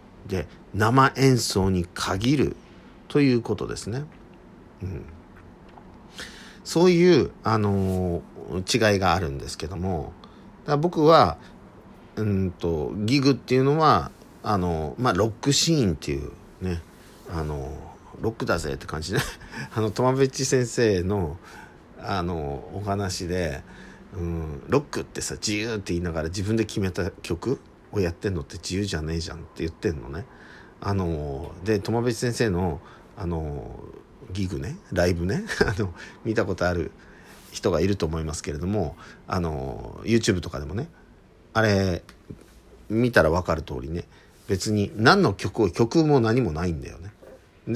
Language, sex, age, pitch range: Japanese, male, 50-69, 80-110 Hz